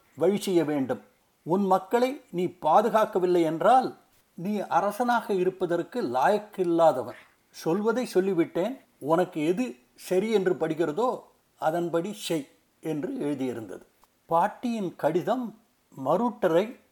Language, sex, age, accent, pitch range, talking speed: Tamil, male, 60-79, native, 170-230 Hz, 90 wpm